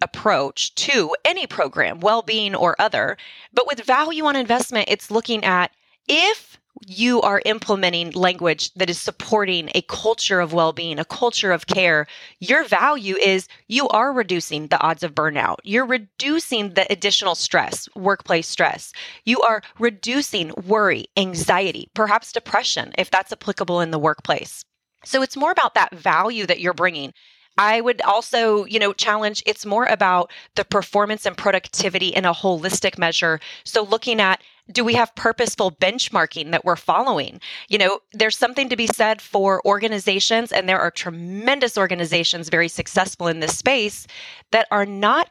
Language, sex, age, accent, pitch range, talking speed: English, female, 30-49, American, 180-230 Hz, 160 wpm